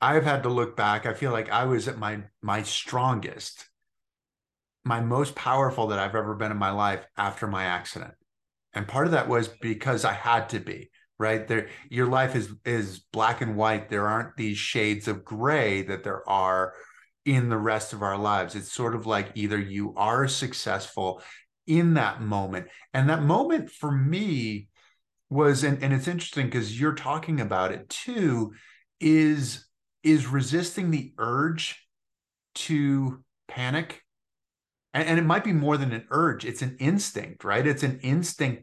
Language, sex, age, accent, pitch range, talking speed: English, male, 30-49, American, 110-145 Hz, 170 wpm